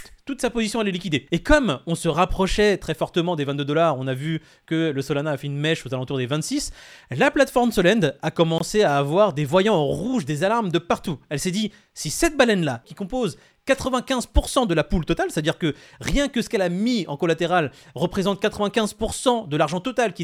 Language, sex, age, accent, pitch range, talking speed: French, male, 30-49, French, 155-230 Hz, 220 wpm